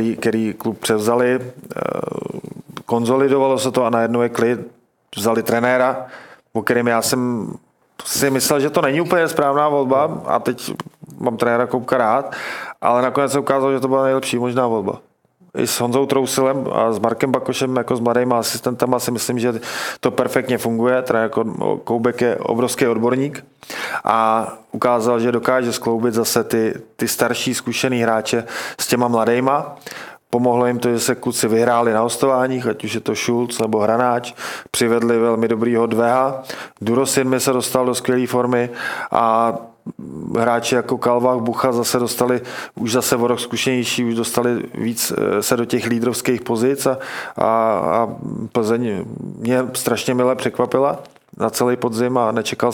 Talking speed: 155 wpm